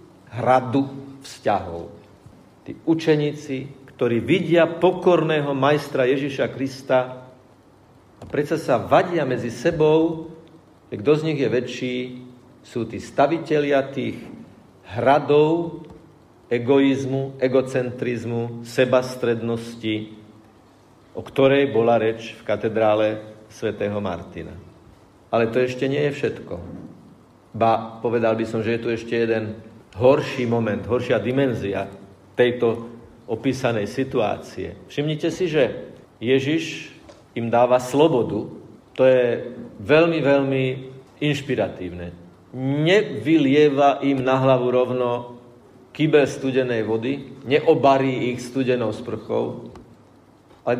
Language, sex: Slovak, male